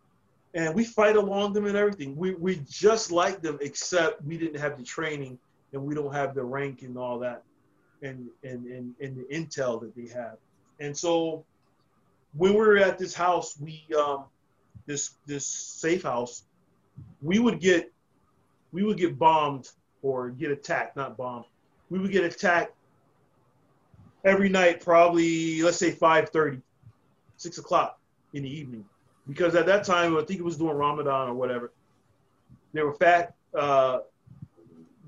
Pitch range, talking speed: 130-170 Hz, 160 wpm